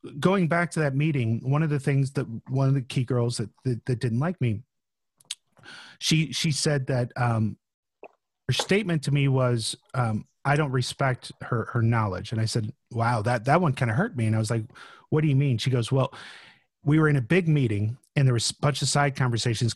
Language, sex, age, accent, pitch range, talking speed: English, male, 30-49, American, 115-150 Hz, 225 wpm